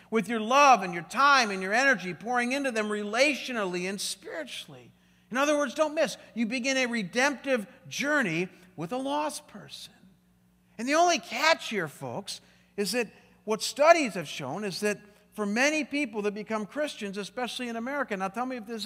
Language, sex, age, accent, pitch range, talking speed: English, male, 50-69, American, 180-250 Hz, 180 wpm